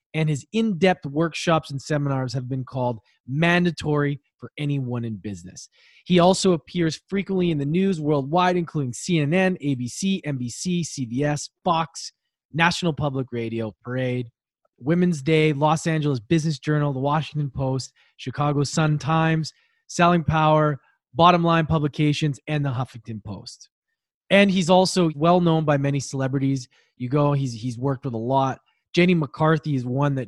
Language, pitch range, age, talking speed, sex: English, 130-165 Hz, 20-39, 145 wpm, male